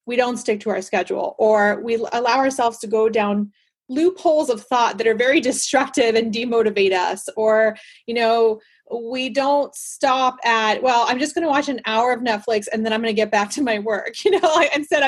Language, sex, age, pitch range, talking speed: English, female, 30-49, 225-285 Hz, 210 wpm